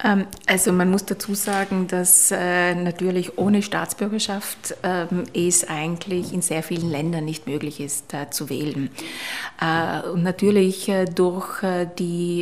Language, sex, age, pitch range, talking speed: German, female, 30-49, 160-190 Hz, 120 wpm